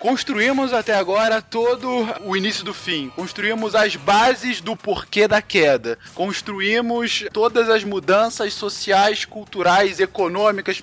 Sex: male